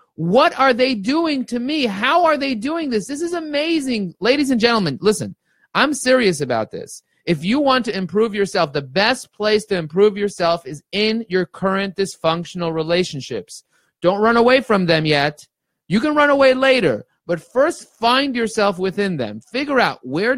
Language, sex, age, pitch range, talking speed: English, male, 30-49, 180-275 Hz, 175 wpm